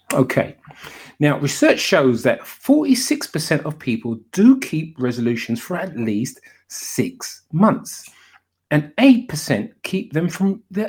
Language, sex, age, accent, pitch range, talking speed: English, male, 40-59, British, 115-175 Hz, 130 wpm